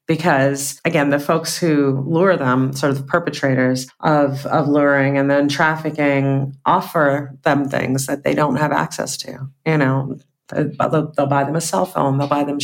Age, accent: 40-59, American